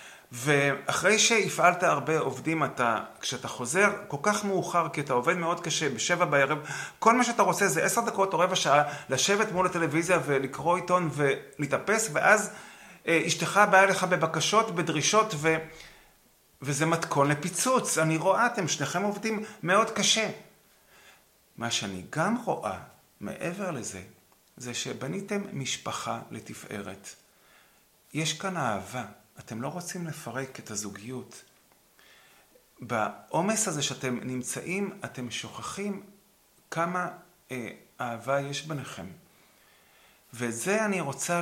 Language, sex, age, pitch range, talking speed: Hebrew, male, 30-49, 135-190 Hz, 120 wpm